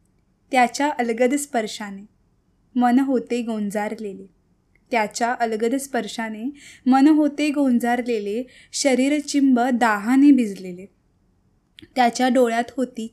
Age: 20-39